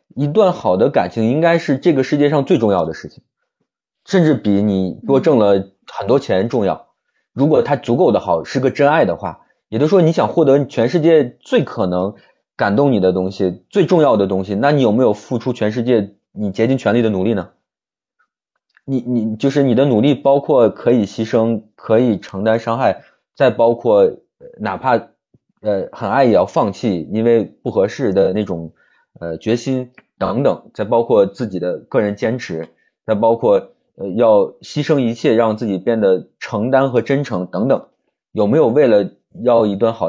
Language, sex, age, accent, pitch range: Chinese, male, 20-39, native, 100-135 Hz